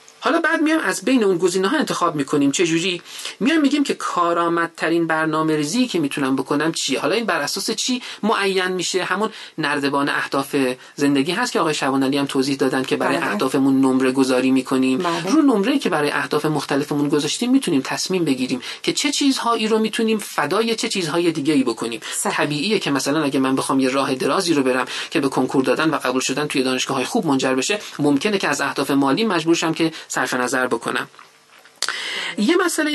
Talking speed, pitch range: 195 wpm, 140-230 Hz